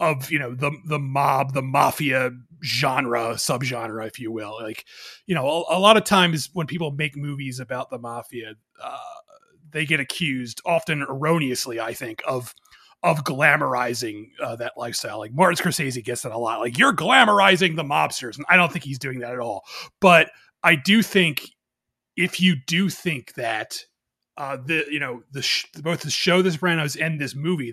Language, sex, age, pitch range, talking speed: English, male, 30-49, 135-175 Hz, 185 wpm